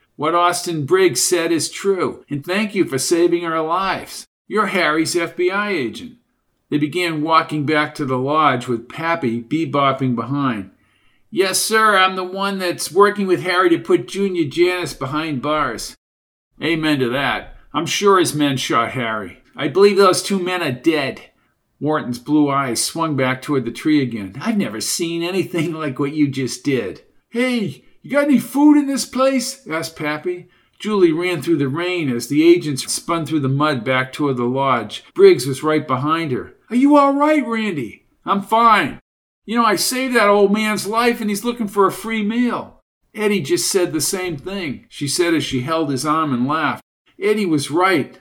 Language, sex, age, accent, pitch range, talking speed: English, male, 50-69, American, 140-200 Hz, 185 wpm